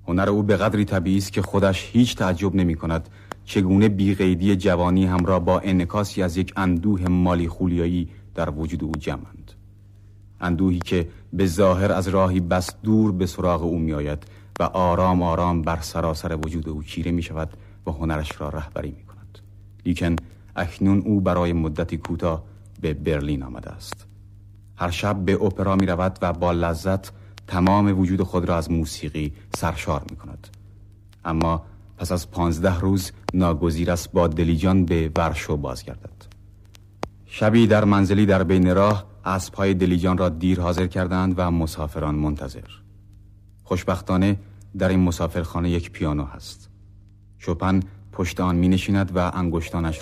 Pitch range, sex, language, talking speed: 85-100 Hz, male, Persian, 145 wpm